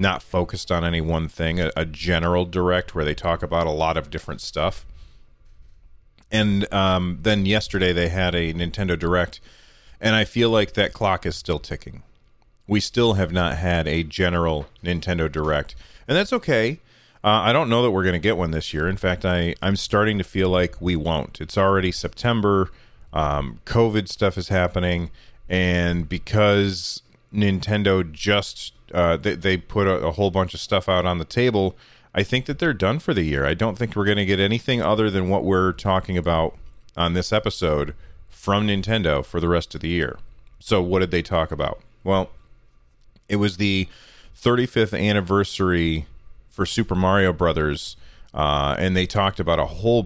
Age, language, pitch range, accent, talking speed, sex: 40-59, English, 85-105 Hz, American, 180 wpm, male